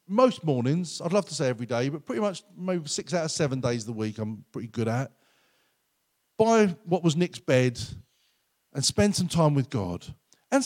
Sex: male